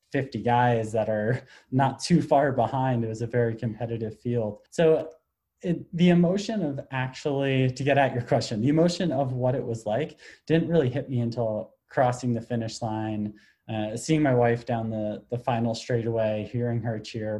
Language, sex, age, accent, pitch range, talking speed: English, male, 20-39, American, 110-130 Hz, 185 wpm